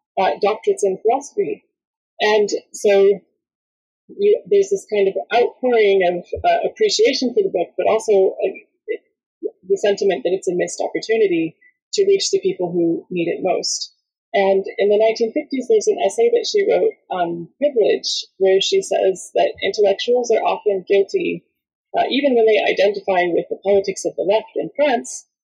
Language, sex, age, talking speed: English, female, 20-39, 160 wpm